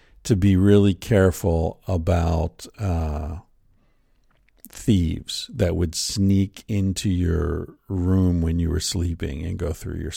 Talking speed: 125 wpm